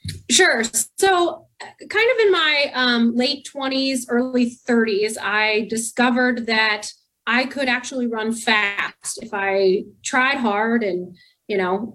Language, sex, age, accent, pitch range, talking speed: English, female, 30-49, American, 200-245 Hz, 130 wpm